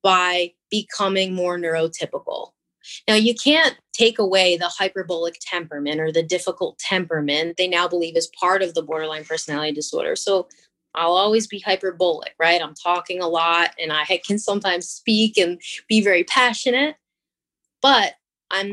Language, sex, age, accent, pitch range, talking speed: English, female, 20-39, American, 170-200 Hz, 150 wpm